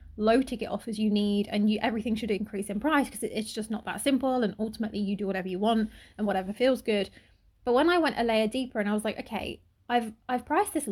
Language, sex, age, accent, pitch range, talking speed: English, female, 20-39, British, 205-255 Hz, 245 wpm